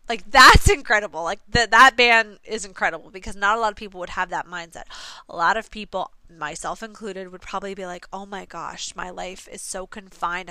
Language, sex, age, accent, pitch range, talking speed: English, female, 20-39, American, 190-245 Hz, 205 wpm